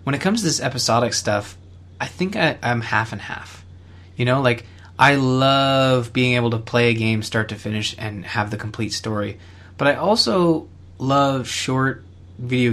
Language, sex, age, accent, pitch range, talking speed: English, male, 20-39, American, 100-125 Hz, 180 wpm